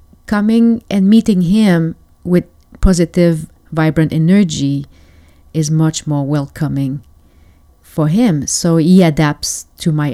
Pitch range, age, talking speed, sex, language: 135-185 Hz, 40-59, 110 wpm, female, English